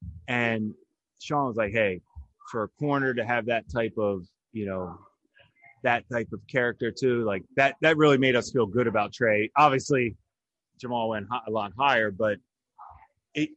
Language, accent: English, American